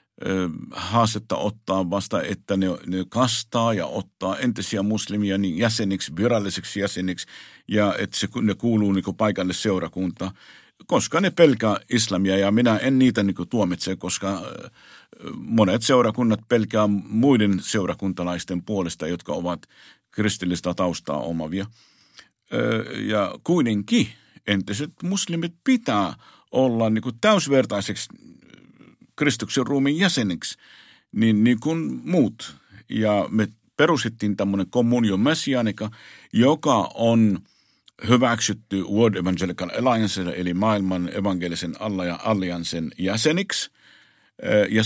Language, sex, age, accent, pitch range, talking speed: Finnish, male, 50-69, native, 95-120 Hz, 105 wpm